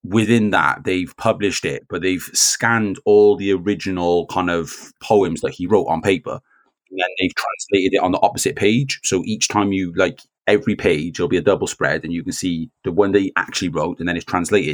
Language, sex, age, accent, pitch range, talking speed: English, male, 30-49, British, 90-110 Hz, 225 wpm